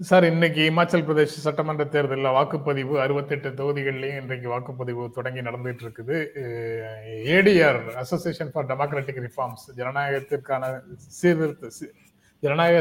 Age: 30-49